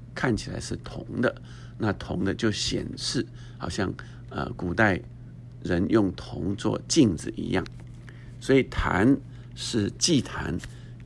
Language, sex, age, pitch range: Chinese, male, 60-79, 105-125 Hz